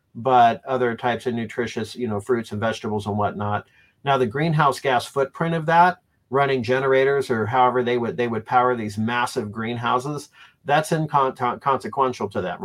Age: 40-59